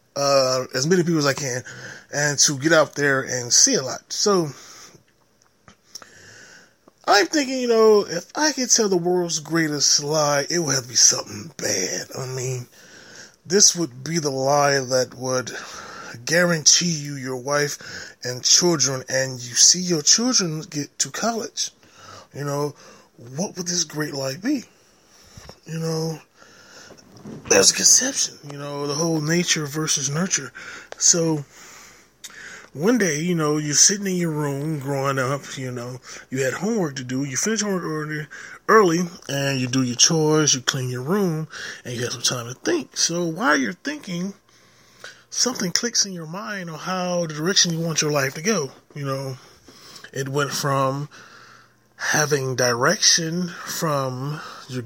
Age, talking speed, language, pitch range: 20-39, 160 wpm, English, 135-175 Hz